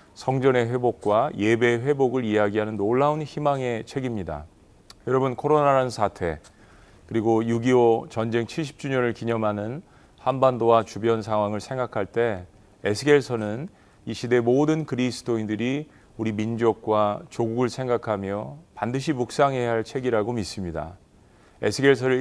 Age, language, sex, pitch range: 40-59, Korean, male, 105-130 Hz